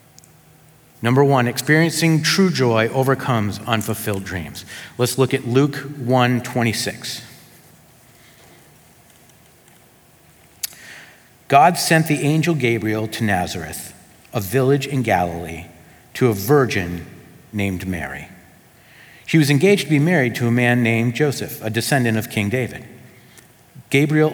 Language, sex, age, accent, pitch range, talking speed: English, male, 50-69, American, 110-140 Hz, 115 wpm